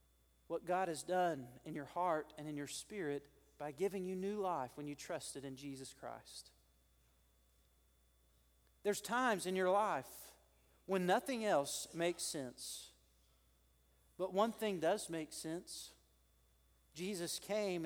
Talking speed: 135 wpm